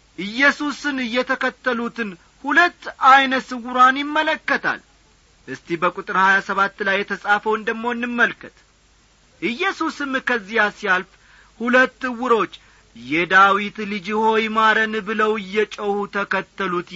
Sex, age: male, 50-69